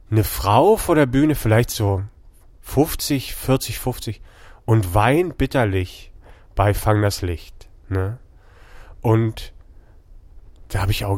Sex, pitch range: male, 105-135 Hz